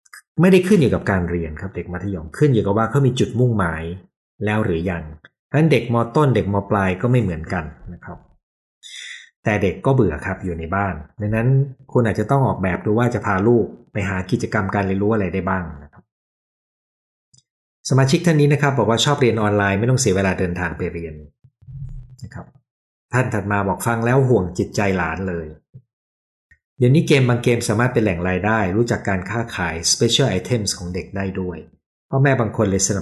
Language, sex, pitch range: Thai, male, 90-120 Hz